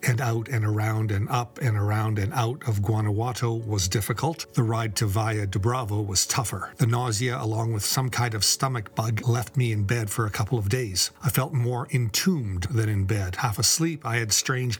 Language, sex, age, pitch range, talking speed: English, male, 40-59, 110-130 Hz, 210 wpm